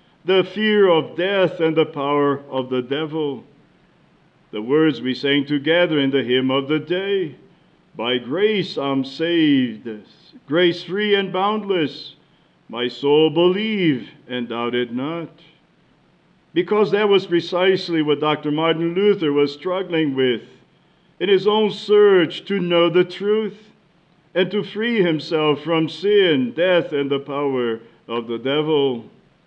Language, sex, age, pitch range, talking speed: English, male, 50-69, 145-190 Hz, 140 wpm